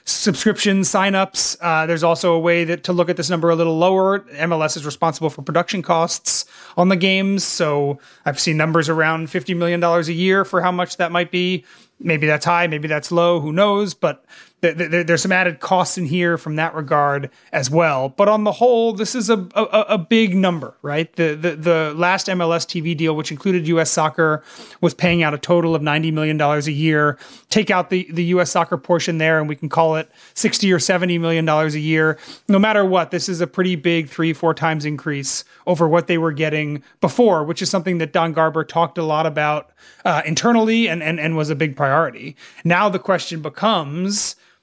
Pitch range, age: 160-185 Hz, 30-49